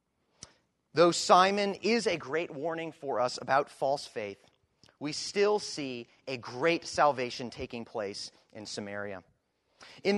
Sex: male